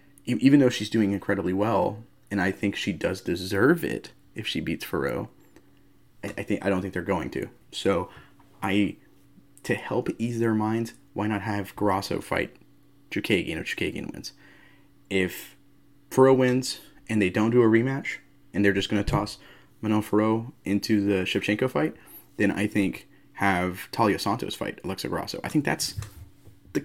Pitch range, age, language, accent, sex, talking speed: 100-120 Hz, 20-39, English, American, male, 170 wpm